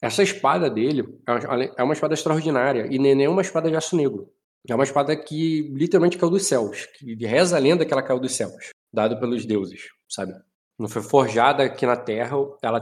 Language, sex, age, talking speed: Portuguese, male, 20-39, 200 wpm